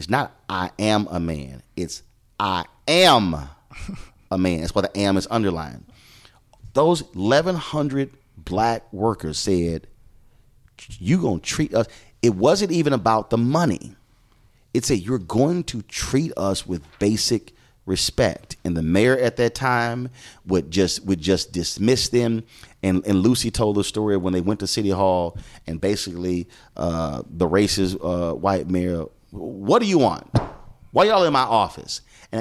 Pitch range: 90-120 Hz